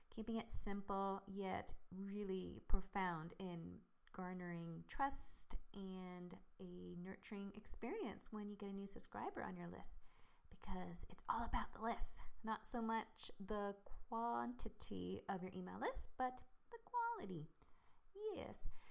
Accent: American